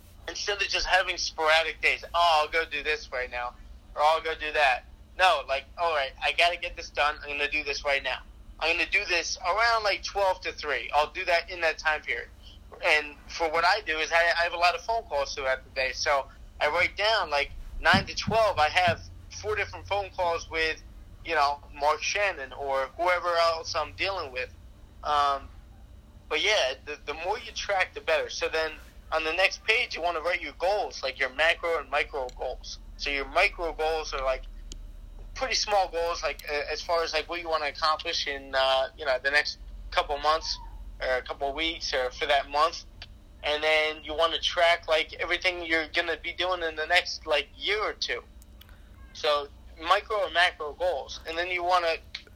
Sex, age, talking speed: male, 30-49, 215 wpm